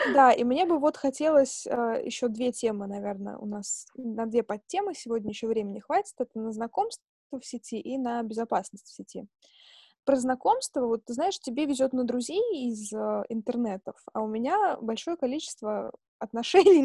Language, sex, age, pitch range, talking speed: Russian, female, 20-39, 225-280 Hz, 170 wpm